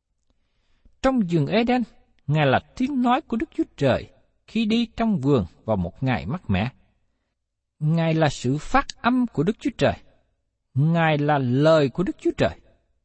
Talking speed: 165 wpm